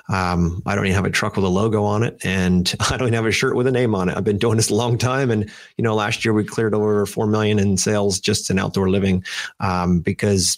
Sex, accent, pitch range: male, American, 95-110 Hz